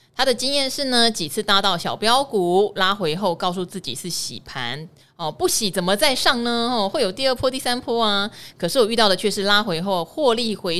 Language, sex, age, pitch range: Chinese, female, 20-39, 170-230 Hz